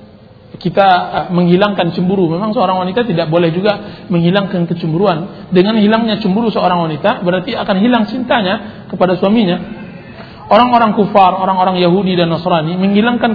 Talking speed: 130 wpm